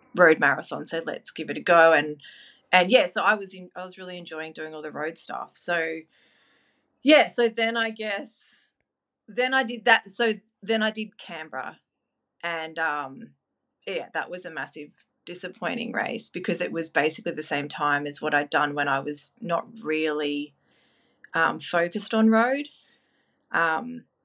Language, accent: English, Australian